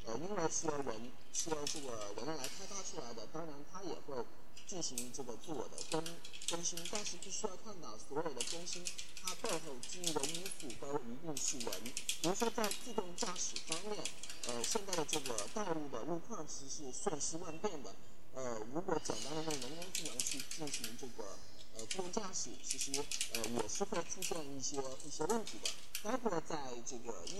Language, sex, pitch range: Chinese, male, 140-195 Hz